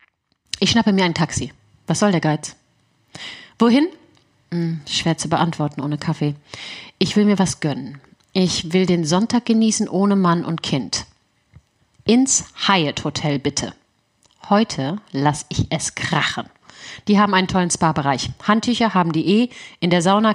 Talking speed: 145 wpm